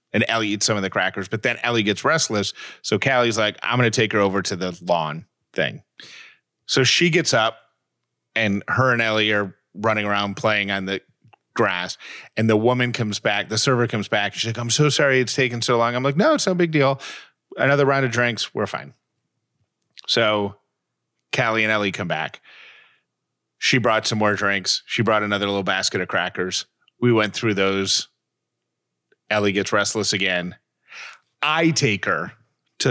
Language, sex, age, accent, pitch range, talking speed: English, male, 30-49, American, 100-120 Hz, 185 wpm